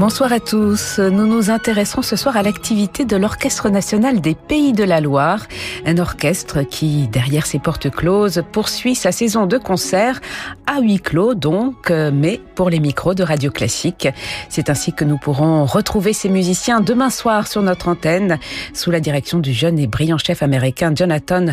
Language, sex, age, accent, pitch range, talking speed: French, female, 50-69, French, 155-210 Hz, 180 wpm